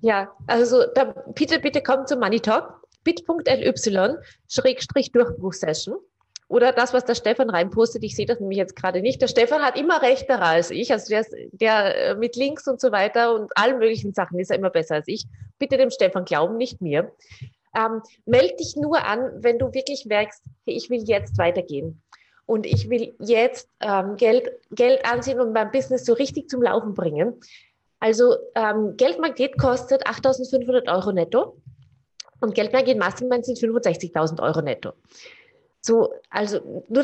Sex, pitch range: female, 200-260 Hz